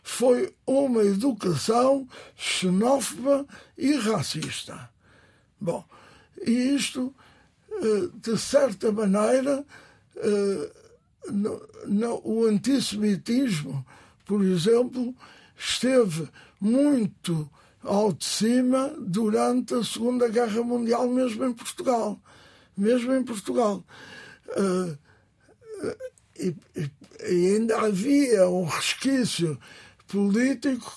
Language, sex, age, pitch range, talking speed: Portuguese, male, 60-79, 195-255 Hz, 75 wpm